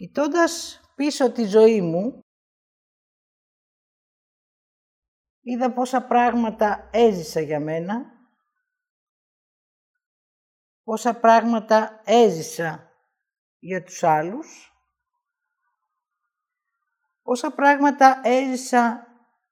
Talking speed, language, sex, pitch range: 60 wpm, Greek, female, 210-285 Hz